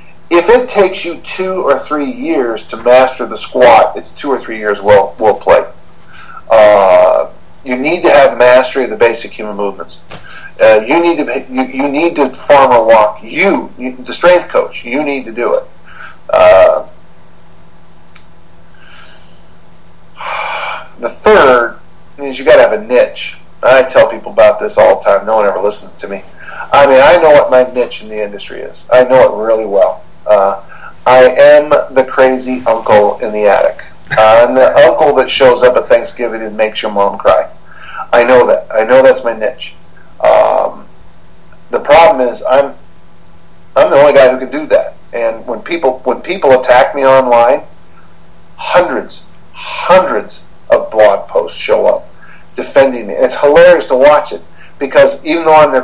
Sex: male